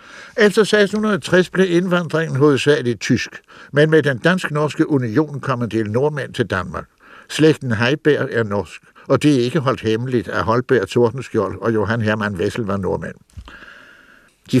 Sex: male